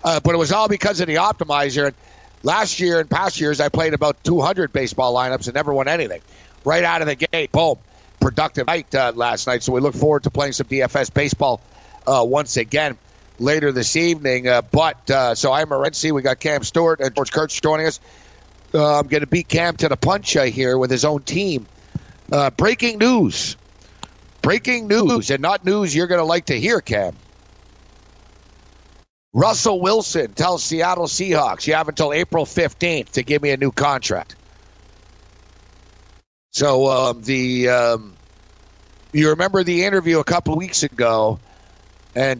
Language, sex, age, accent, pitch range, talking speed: English, male, 60-79, American, 115-160 Hz, 175 wpm